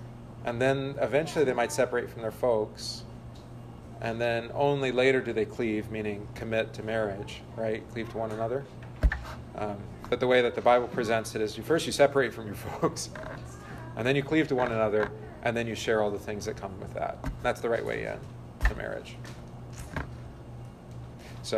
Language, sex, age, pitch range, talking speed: English, male, 40-59, 110-140 Hz, 195 wpm